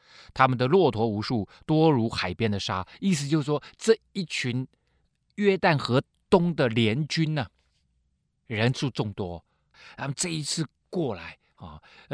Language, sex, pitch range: Chinese, male, 110-170 Hz